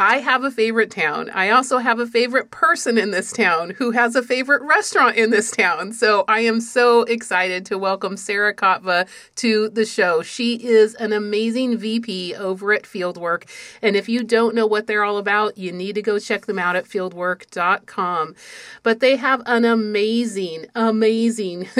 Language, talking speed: English, 180 wpm